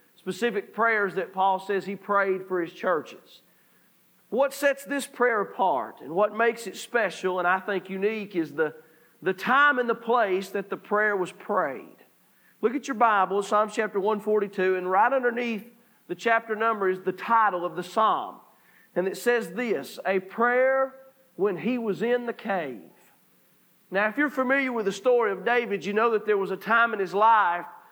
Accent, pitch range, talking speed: American, 195-240 Hz, 185 wpm